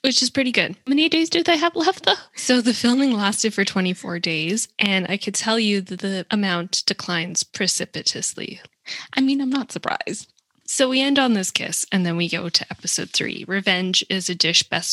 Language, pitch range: English, 175-245 Hz